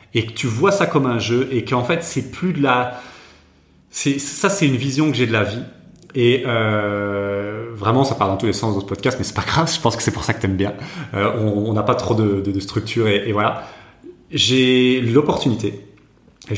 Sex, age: male, 30-49